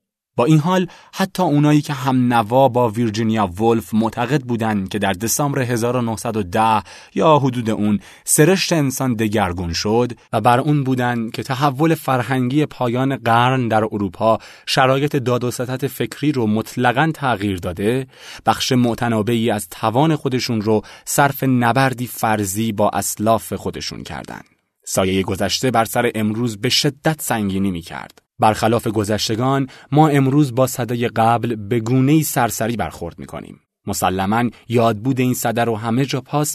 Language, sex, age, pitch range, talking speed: Persian, male, 30-49, 110-130 Hz, 140 wpm